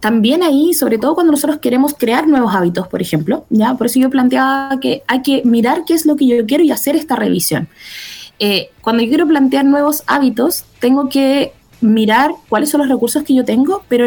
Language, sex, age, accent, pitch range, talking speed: Spanish, female, 20-39, Venezuelan, 235-300 Hz, 210 wpm